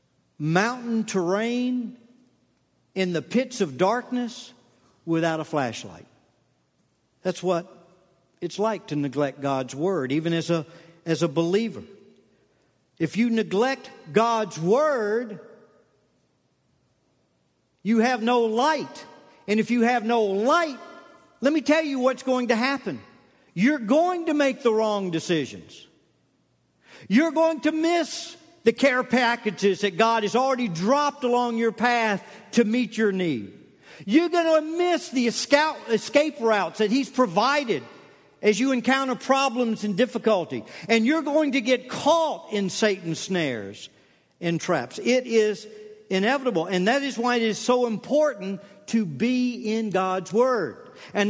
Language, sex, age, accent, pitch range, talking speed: English, male, 50-69, American, 180-255 Hz, 135 wpm